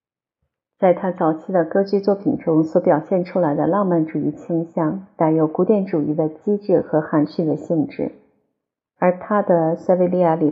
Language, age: Chinese, 50-69